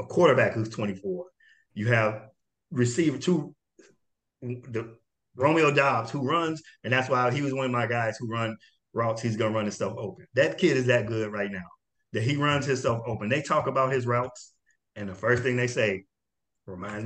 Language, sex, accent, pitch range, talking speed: English, male, American, 110-140 Hz, 190 wpm